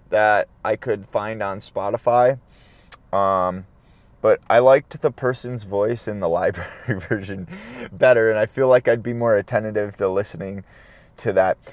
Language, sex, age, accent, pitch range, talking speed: English, male, 20-39, American, 120-175 Hz, 155 wpm